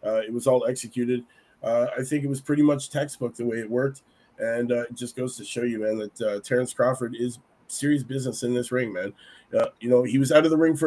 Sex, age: male, 20-39